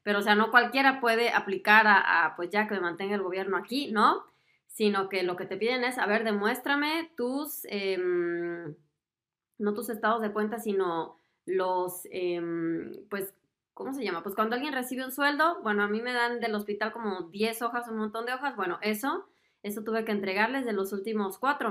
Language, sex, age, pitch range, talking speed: Spanish, female, 20-39, 190-240 Hz, 195 wpm